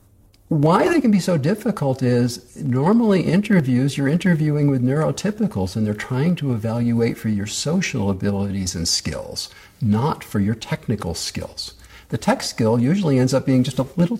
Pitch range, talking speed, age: 105-145 Hz, 165 wpm, 50-69